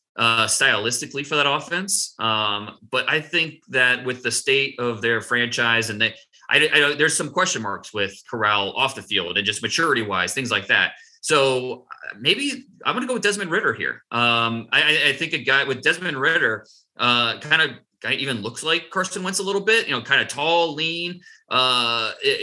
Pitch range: 115-160 Hz